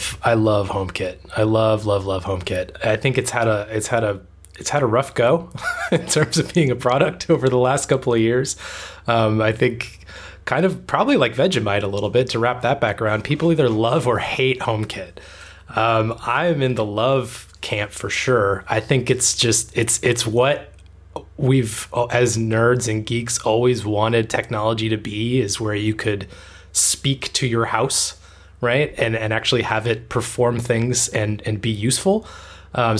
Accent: American